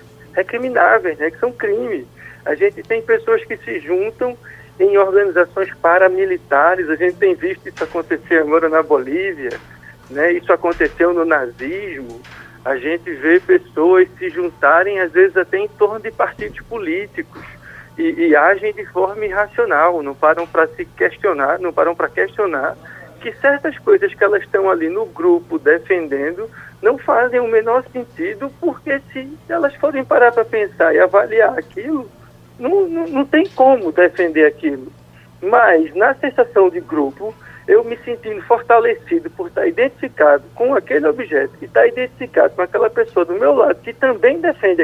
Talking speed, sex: 155 wpm, male